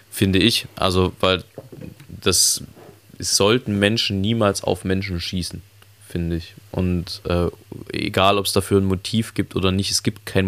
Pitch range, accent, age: 90-105 Hz, German, 20-39